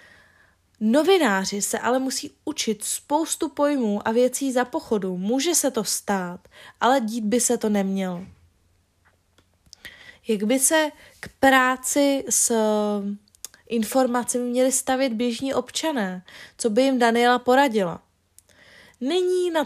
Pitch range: 205-270 Hz